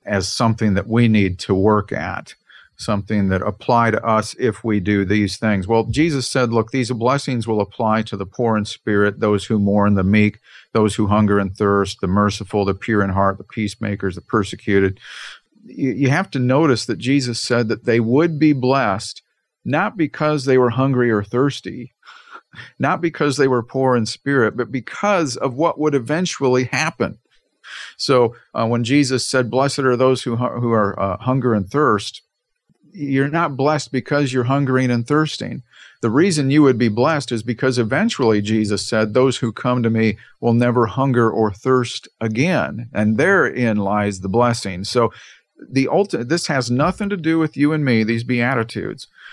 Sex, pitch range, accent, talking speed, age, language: male, 105-135 Hz, American, 180 wpm, 50-69, English